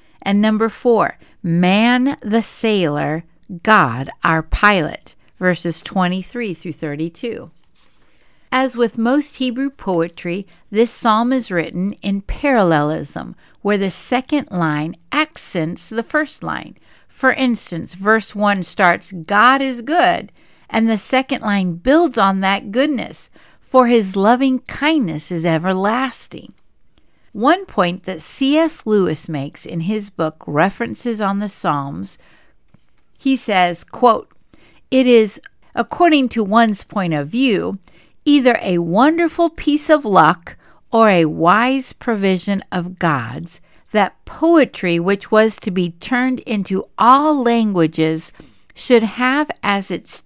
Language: English